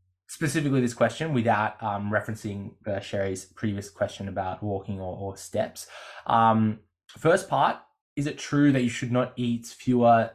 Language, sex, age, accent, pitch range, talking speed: English, male, 20-39, Australian, 105-130 Hz, 155 wpm